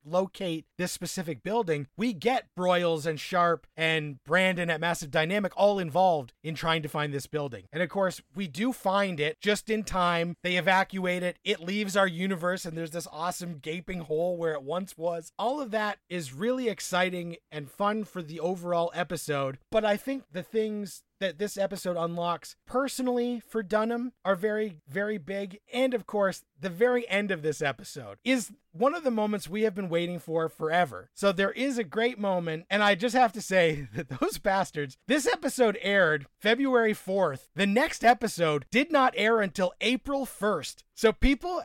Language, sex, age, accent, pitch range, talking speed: English, male, 30-49, American, 170-225 Hz, 185 wpm